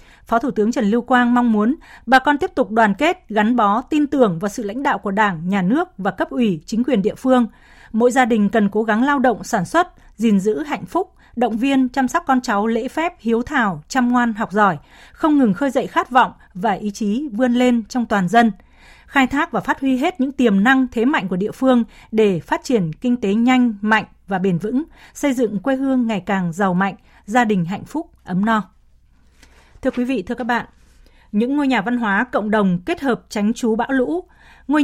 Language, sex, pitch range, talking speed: Vietnamese, female, 210-260 Hz, 230 wpm